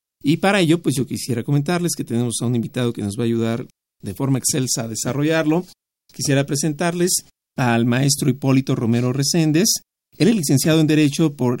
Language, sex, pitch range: Spanish, male, 125-150 Hz